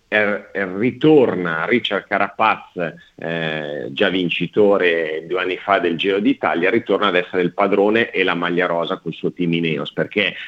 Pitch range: 95-115 Hz